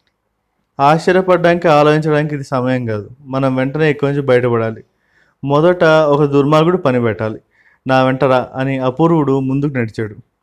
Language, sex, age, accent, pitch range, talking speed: Telugu, male, 30-49, native, 130-160 Hz, 120 wpm